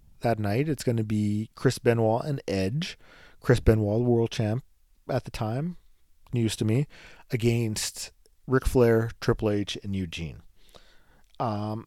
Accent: American